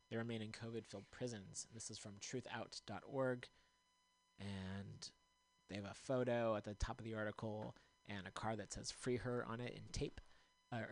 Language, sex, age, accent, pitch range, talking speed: English, male, 30-49, American, 105-125 Hz, 175 wpm